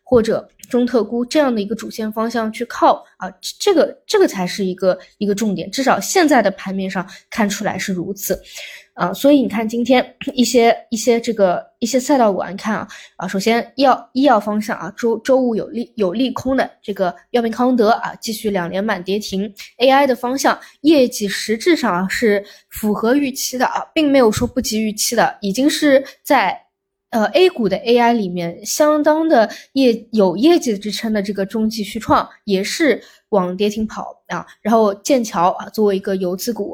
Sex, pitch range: female, 195-255 Hz